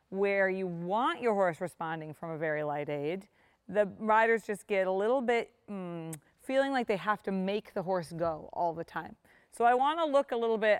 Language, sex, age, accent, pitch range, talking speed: English, female, 30-49, American, 180-235 Hz, 215 wpm